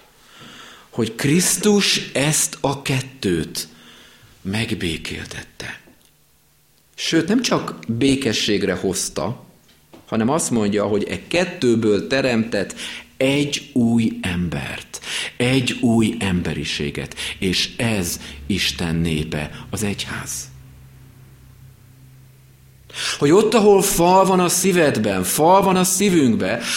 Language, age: Hungarian, 50-69